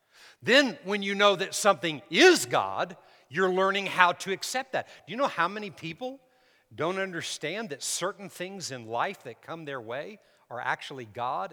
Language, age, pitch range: English, 50-69, 140-190 Hz